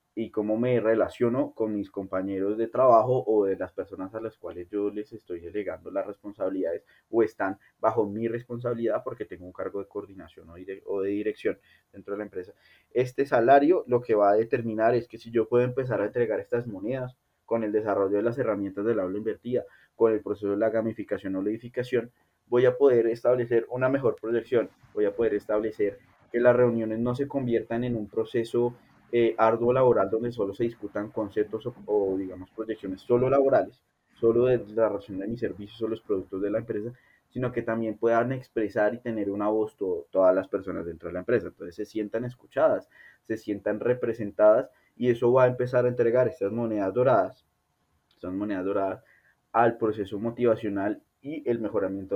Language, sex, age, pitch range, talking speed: Spanish, male, 20-39, 105-120 Hz, 190 wpm